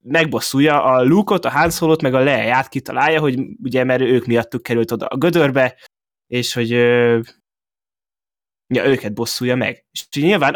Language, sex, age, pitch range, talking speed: Hungarian, male, 20-39, 115-145 Hz, 155 wpm